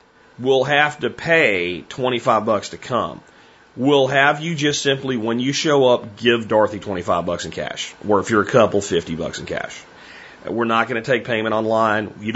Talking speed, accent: 195 wpm, American